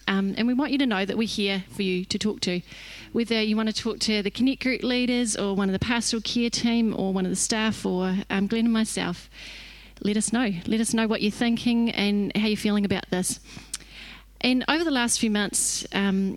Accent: Australian